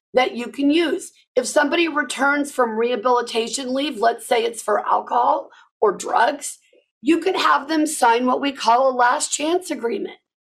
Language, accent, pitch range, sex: English, American, 235-310 Hz, female